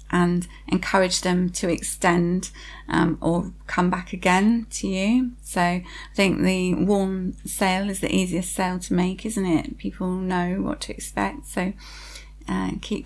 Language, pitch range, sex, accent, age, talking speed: English, 180-215 Hz, female, British, 30-49, 155 wpm